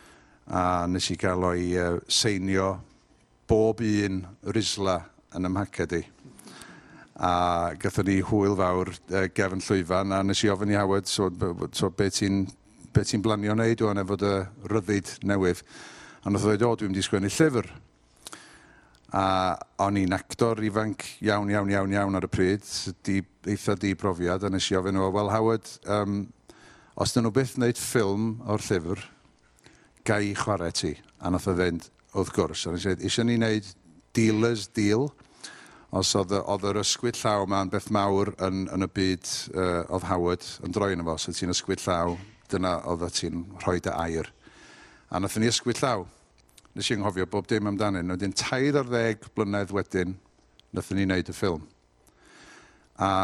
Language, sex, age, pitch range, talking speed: English, male, 50-69, 90-105 Hz, 155 wpm